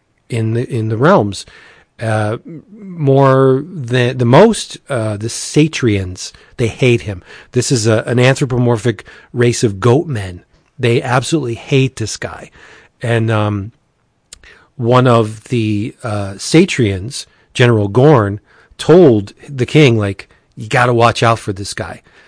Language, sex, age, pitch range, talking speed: English, male, 40-59, 110-135 Hz, 135 wpm